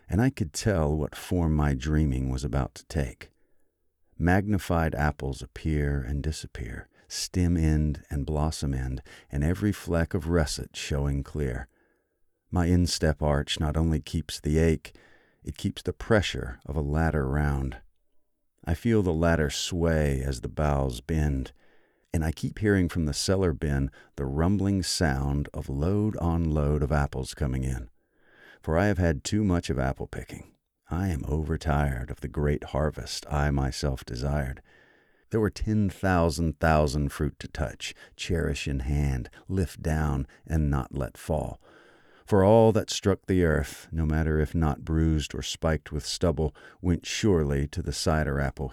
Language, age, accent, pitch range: English, 50-69, American, 70-85 Hz